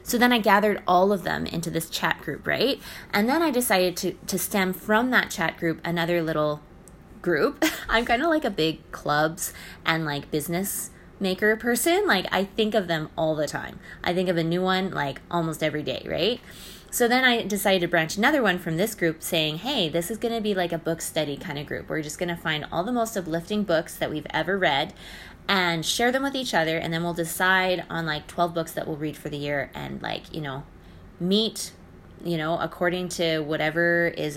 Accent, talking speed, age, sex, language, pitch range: American, 220 wpm, 20-39, female, English, 165-215 Hz